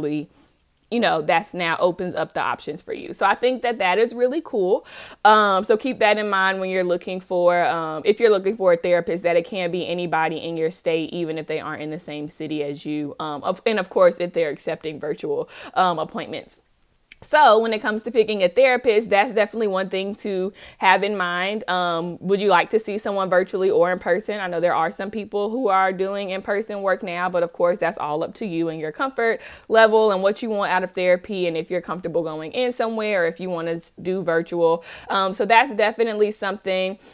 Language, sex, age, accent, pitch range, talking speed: English, female, 20-39, American, 175-210 Hz, 230 wpm